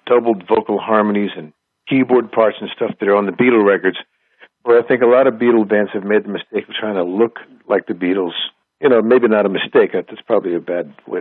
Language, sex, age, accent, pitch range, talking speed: English, male, 60-79, American, 105-120 Hz, 235 wpm